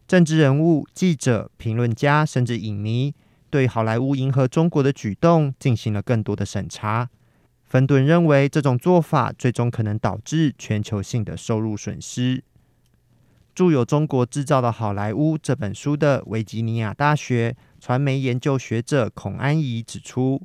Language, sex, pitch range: Chinese, male, 115-145 Hz